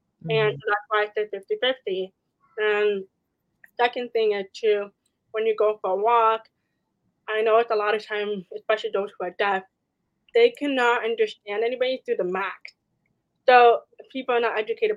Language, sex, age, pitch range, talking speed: English, female, 20-39, 195-260 Hz, 165 wpm